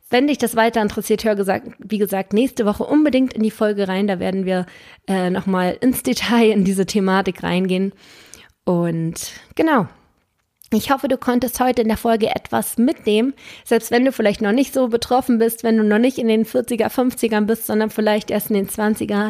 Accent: German